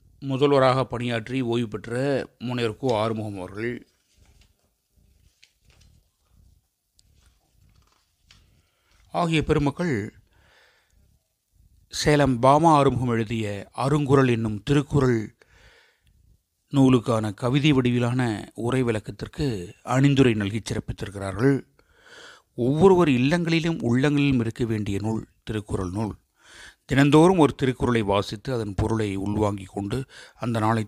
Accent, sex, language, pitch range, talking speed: native, male, Tamil, 105-135 Hz, 80 wpm